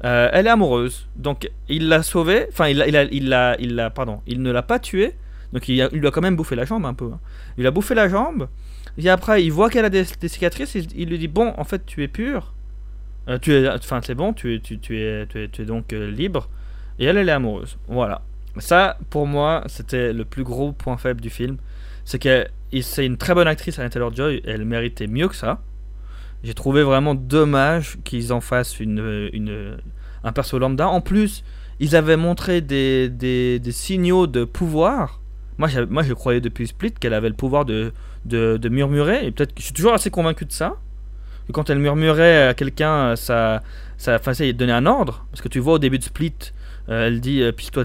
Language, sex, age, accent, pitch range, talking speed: French, male, 20-39, French, 115-150 Hz, 220 wpm